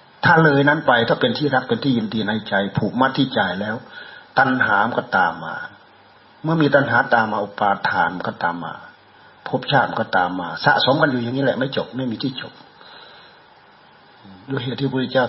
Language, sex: Thai, male